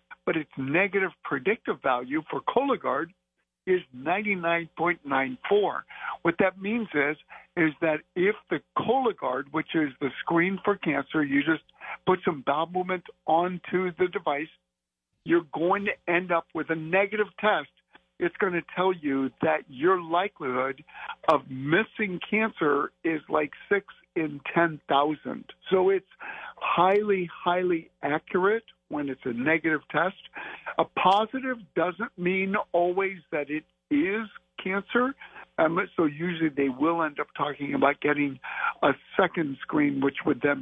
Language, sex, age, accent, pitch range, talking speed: English, male, 60-79, American, 150-195 Hz, 135 wpm